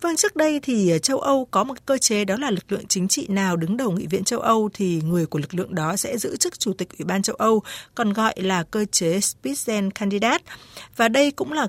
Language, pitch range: Vietnamese, 190-260 Hz